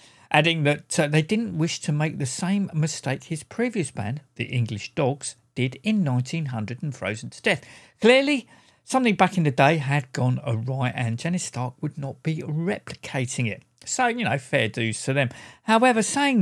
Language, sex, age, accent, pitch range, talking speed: English, male, 50-69, British, 125-190 Hz, 185 wpm